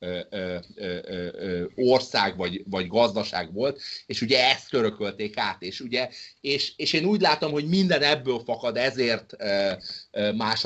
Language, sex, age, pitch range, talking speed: Hungarian, male, 30-49, 105-145 Hz, 130 wpm